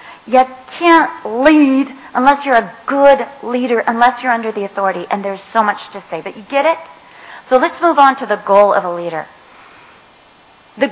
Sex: female